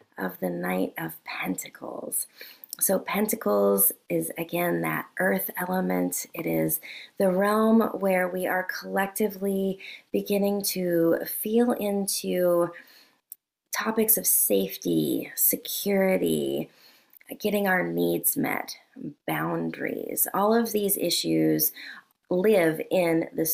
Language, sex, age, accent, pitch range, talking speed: English, female, 20-39, American, 160-220 Hz, 100 wpm